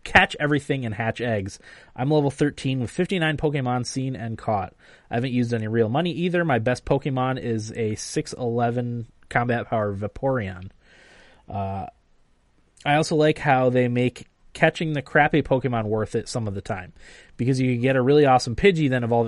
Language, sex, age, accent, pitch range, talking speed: English, male, 20-39, American, 110-140 Hz, 175 wpm